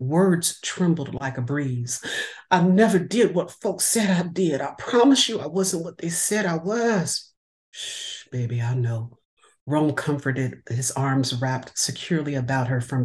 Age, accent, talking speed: 50-69, American, 165 wpm